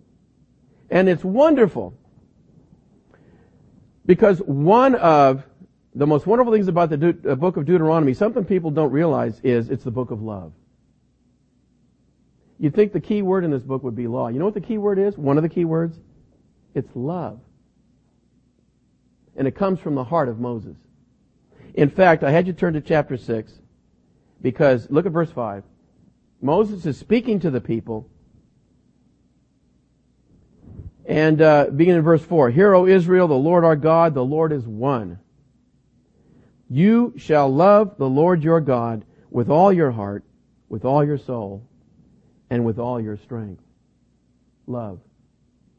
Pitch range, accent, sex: 120-170 Hz, American, male